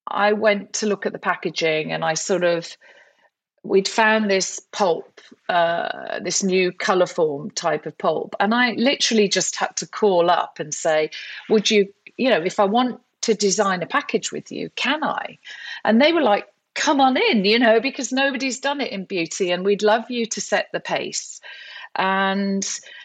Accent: British